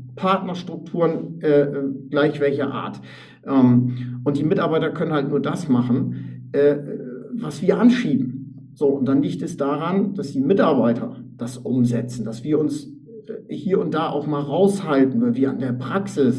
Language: German